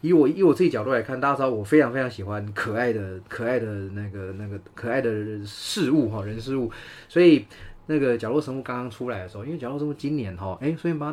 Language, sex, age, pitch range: Chinese, male, 20-39, 100-135 Hz